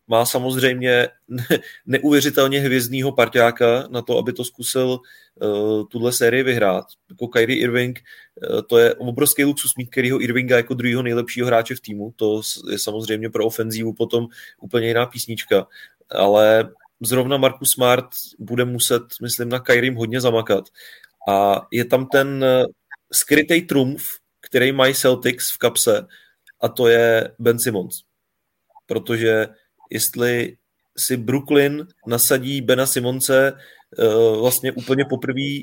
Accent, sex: native, male